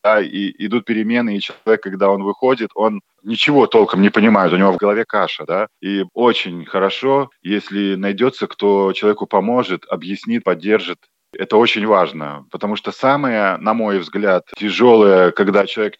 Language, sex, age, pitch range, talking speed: Russian, male, 20-39, 95-115 Hz, 160 wpm